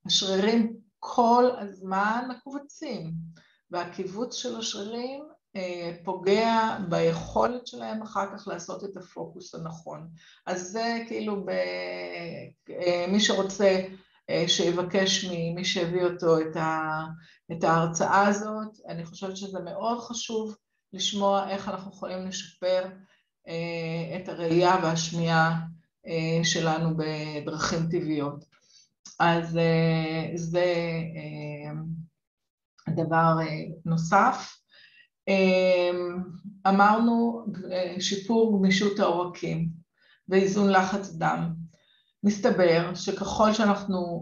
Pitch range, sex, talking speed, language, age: 165-200 Hz, female, 80 wpm, Hebrew, 50-69